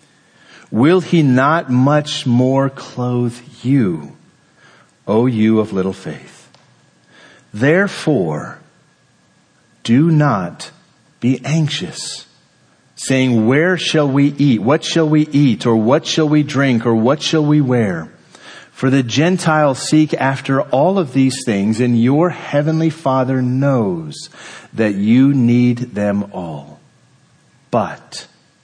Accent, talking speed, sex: American, 115 wpm, male